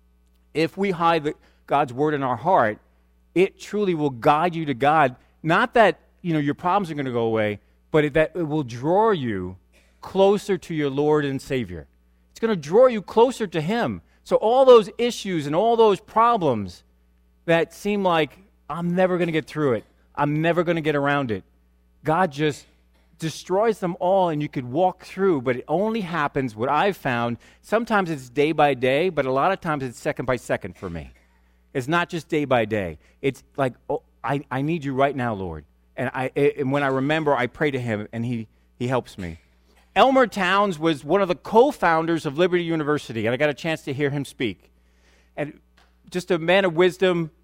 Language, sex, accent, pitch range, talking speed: English, male, American, 110-175 Hz, 200 wpm